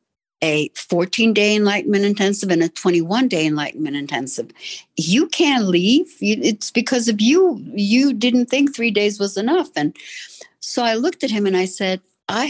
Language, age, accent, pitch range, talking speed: English, 60-79, American, 165-220 Hz, 160 wpm